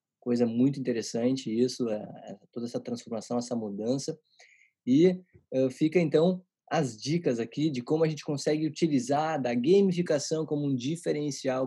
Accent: Brazilian